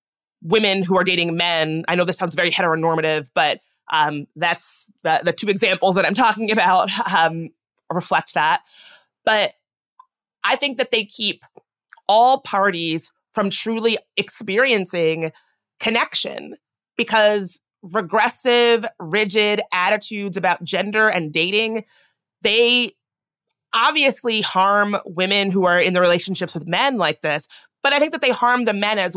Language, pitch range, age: English, 180-230 Hz, 20-39